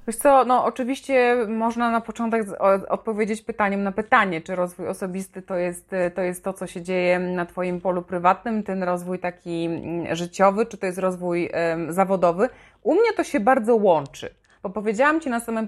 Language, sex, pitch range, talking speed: Polish, female, 185-225 Hz, 170 wpm